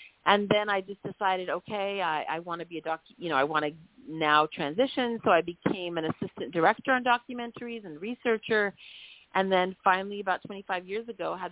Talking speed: 200 wpm